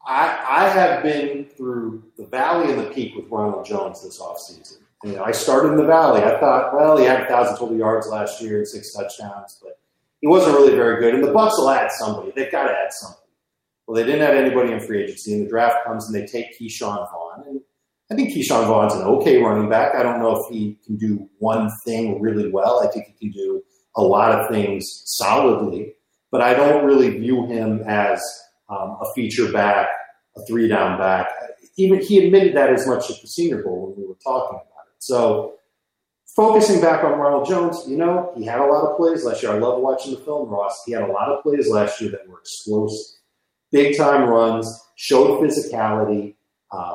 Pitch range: 110-155 Hz